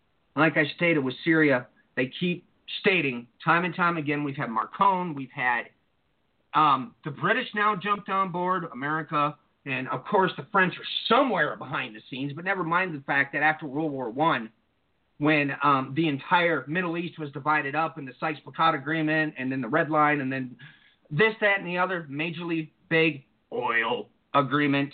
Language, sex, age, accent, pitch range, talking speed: English, male, 40-59, American, 145-180 Hz, 180 wpm